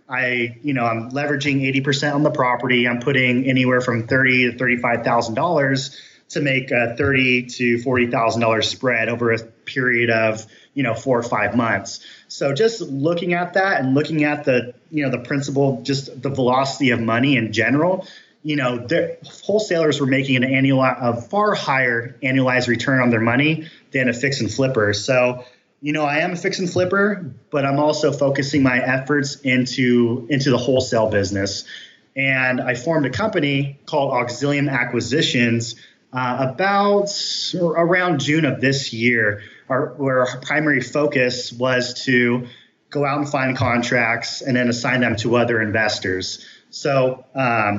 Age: 30-49